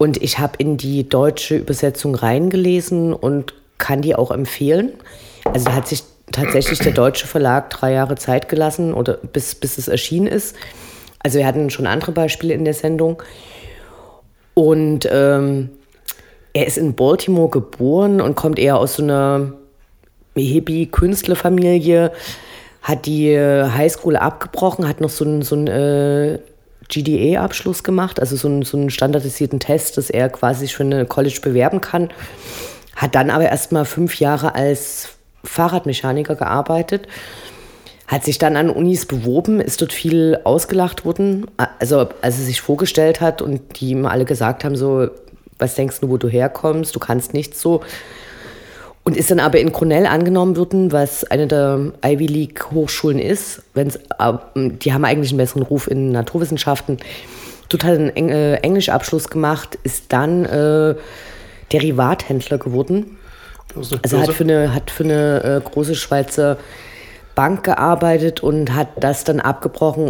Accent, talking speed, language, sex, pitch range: German, 150 wpm, German, female, 135-160 Hz